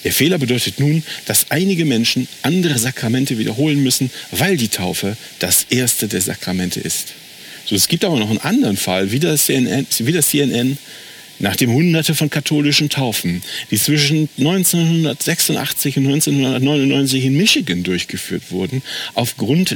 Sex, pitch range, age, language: male, 125-170 Hz, 50-69, German